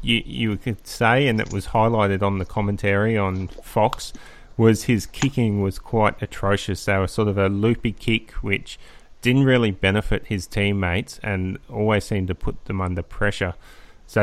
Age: 30-49